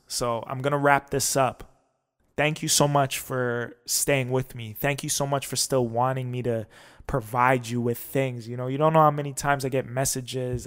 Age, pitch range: 20-39, 115-140 Hz